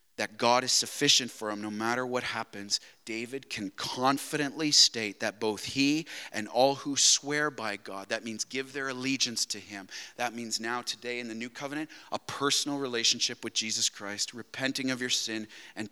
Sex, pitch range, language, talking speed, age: male, 95-125 Hz, English, 185 wpm, 30-49